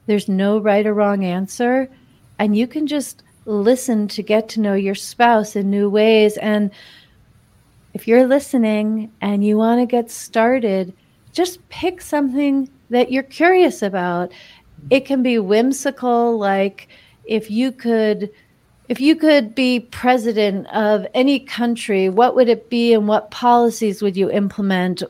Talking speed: 150 wpm